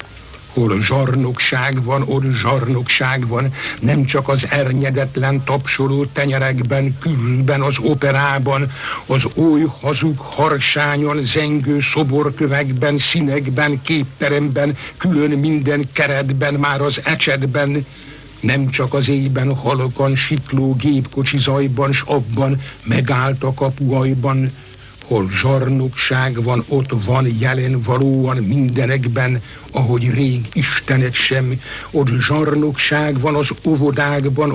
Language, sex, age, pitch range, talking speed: Hungarian, male, 60-79, 130-145 Hz, 100 wpm